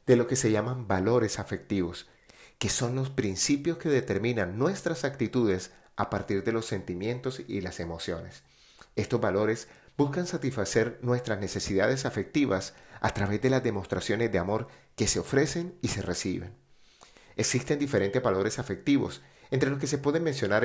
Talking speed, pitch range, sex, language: 155 wpm, 95-130 Hz, male, Spanish